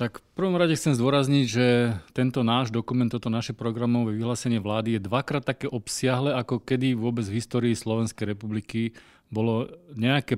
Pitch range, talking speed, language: 115-135 Hz, 160 wpm, Slovak